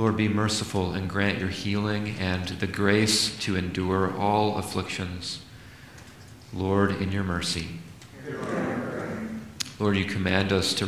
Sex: male